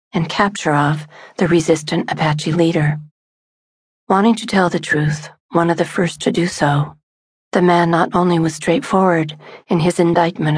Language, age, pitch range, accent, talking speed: English, 40-59, 155-180 Hz, American, 160 wpm